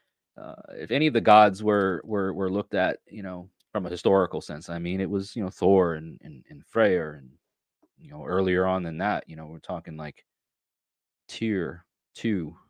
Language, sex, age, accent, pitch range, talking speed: English, male, 30-49, American, 85-110 Hz, 200 wpm